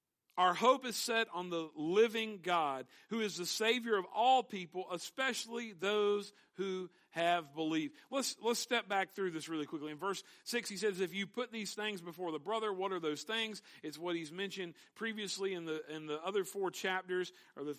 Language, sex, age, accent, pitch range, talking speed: English, male, 50-69, American, 170-215 Hz, 200 wpm